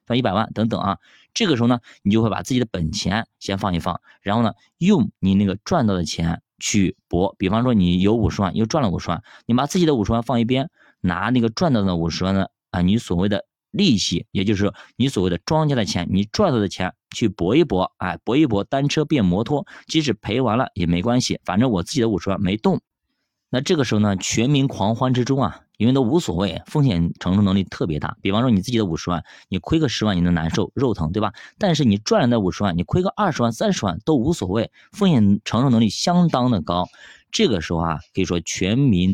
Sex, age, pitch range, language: male, 20-39, 90-125 Hz, Chinese